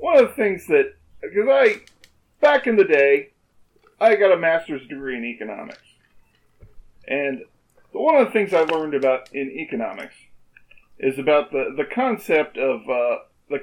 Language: English